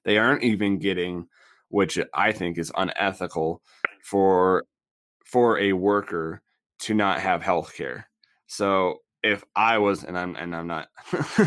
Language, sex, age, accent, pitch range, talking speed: English, male, 20-39, American, 90-105 Hz, 140 wpm